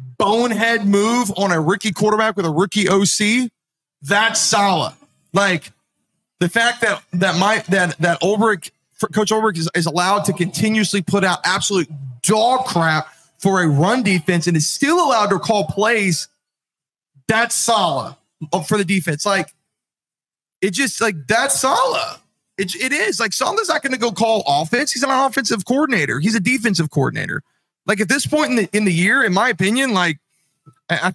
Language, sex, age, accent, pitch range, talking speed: English, male, 30-49, American, 155-210 Hz, 170 wpm